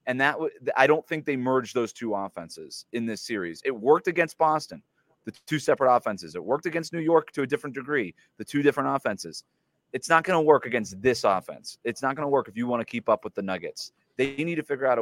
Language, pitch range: English, 110-150 Hz